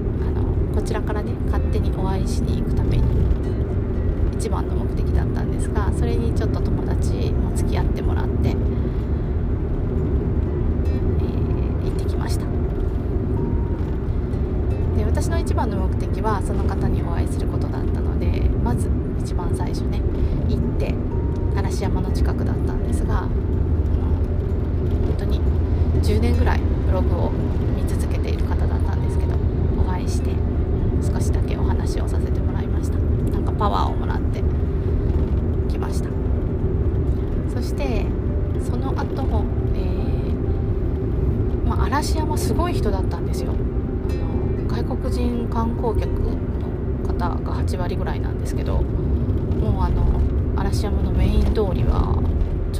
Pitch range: 80-90 Hz